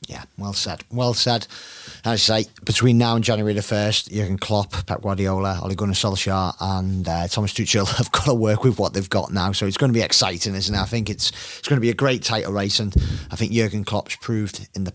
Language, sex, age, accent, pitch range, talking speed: English, male, 30-49, British, 95-110 Hz, 245 wpm